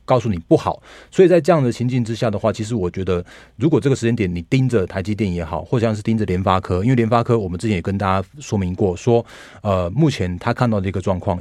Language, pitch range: Chinese, 95-120 Hz